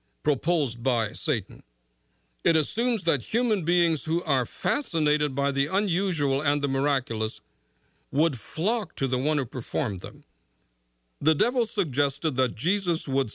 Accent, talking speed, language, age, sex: American, 140 wpm, English, 60-79, male